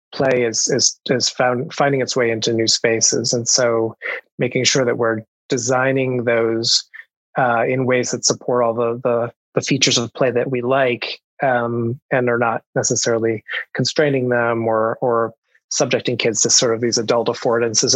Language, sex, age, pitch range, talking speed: English, male, 20-39, 115-130 Hz, 175 wpm